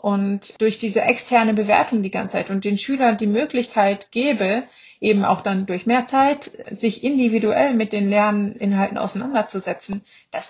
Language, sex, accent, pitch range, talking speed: German, female, German, 205-235 Hz, 155 wpm